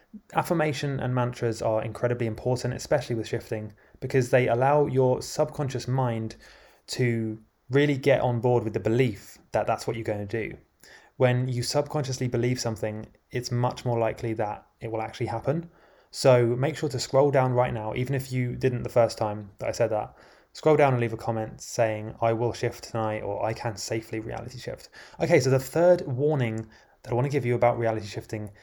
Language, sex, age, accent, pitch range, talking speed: English, male, 20-39, British, 115-135 Hz, 195 wpm